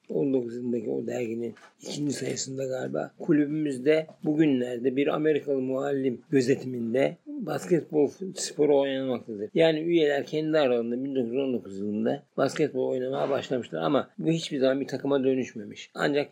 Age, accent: 50-69, native